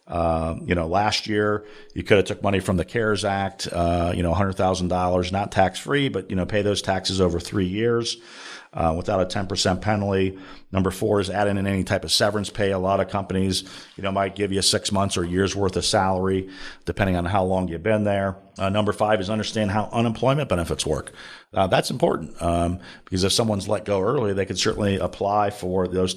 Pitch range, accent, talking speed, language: 95-105 Hz, American, 210 wpm, English